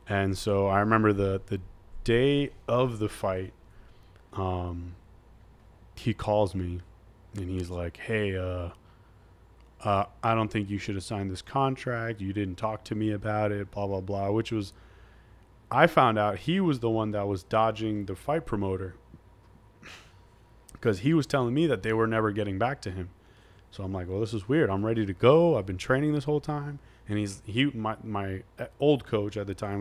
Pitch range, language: 95-115 Hz, English